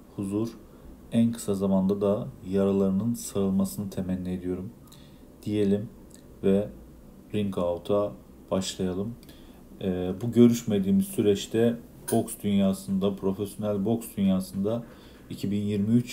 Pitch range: 95-115 Hz